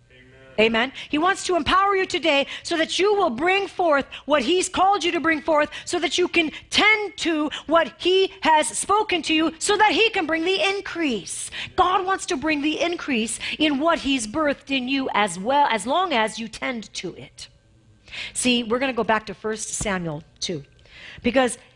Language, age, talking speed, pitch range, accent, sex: English, 40-59, 195 wpm, 210-325 Hz, American, female